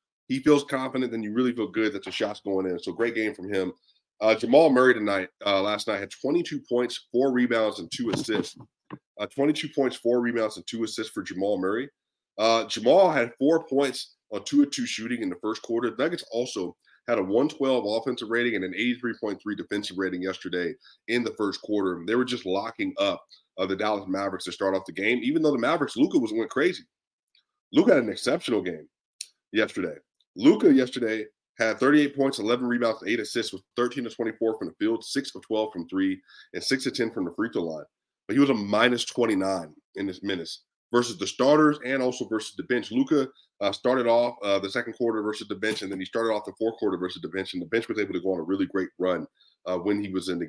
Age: 30-49